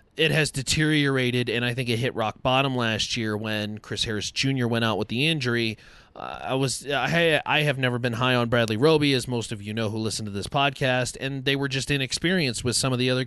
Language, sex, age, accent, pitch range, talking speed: English, male, 30-49, American, 110-155 Hz, 235 wpm